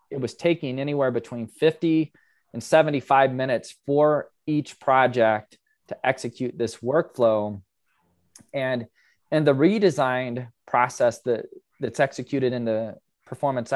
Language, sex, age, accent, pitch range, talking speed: English, male, 20-39, American, 120-150 Hz, 120 wpm